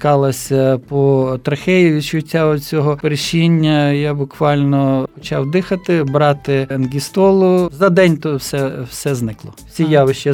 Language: Ukrainian